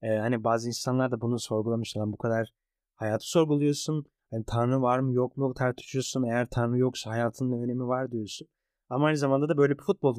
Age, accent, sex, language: 30-49, native, male, Turkish